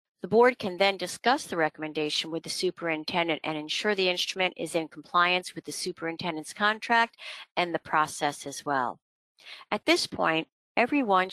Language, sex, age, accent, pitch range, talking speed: English, female, 50-69, American, 160-205 Hz, 160 wpm